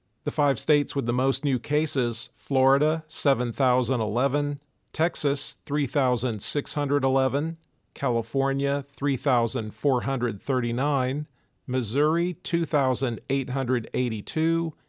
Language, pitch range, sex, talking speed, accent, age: English, 125-145 Hz, male, 65 wpm, American, 50-69